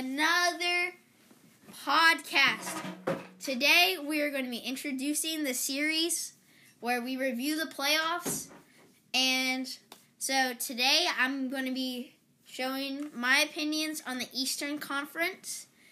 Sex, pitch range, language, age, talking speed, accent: female, 255-320 Hz, English, 10-29, 115 wpm, American